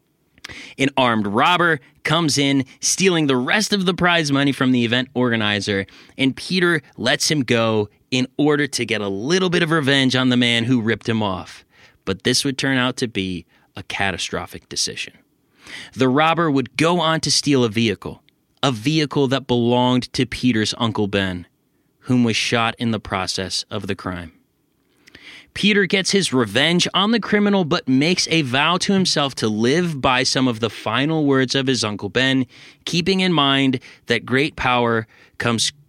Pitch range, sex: 115-155 Hz, male